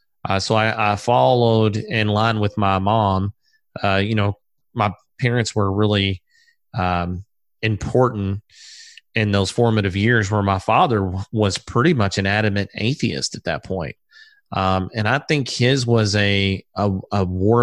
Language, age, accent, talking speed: English, 30-49, American, 150 wpm